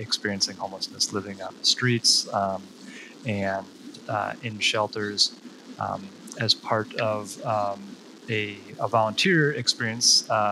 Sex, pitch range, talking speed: male, 100-115 Hz, 120 wpm